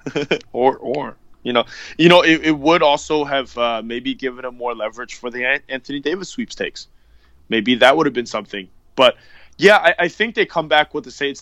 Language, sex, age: English, male, 20-39